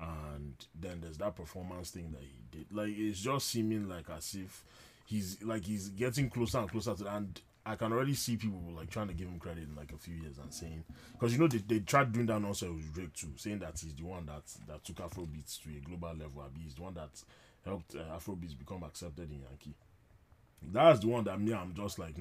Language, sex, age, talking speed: English, male, 20-39, 240 wpm